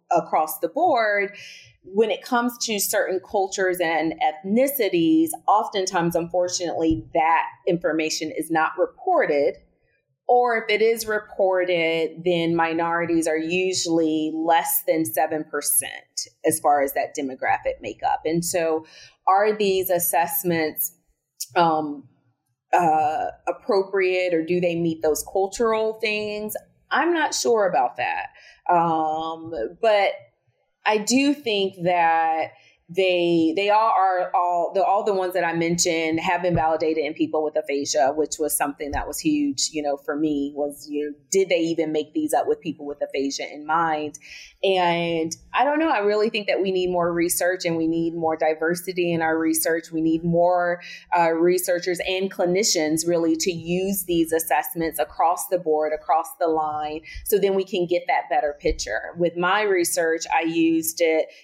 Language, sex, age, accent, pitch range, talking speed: English, female, 30-49, American, 160-195 Hz, 155 wpm